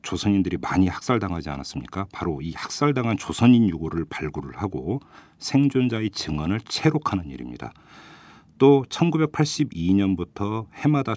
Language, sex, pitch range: Korean, male, 85-120 Hz